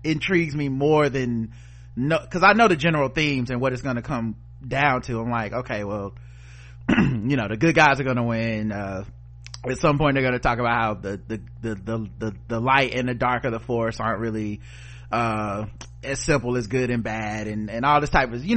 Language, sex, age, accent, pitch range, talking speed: English, male, 30-49, American, 120-155 Hz, 230 wpm